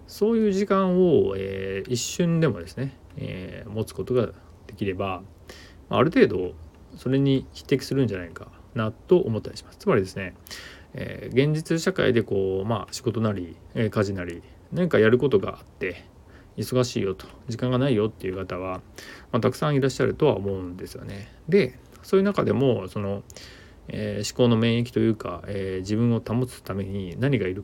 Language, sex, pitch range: Japanese, male, 95-125 Hz